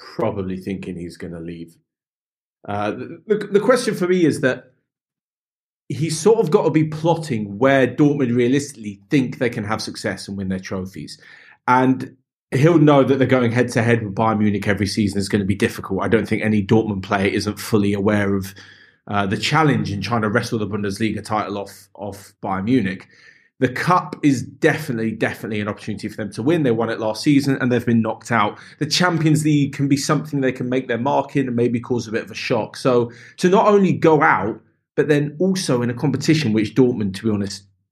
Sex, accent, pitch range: male, British, 105-145 Hz